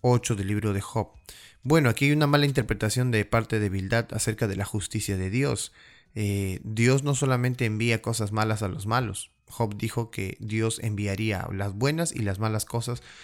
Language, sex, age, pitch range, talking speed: Spanish, male, 20-39, 100-130 Hz, 190 wpm